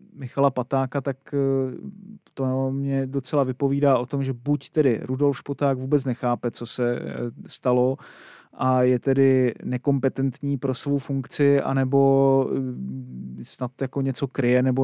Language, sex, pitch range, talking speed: Czech, male, 130-140 Hz, 130 wpm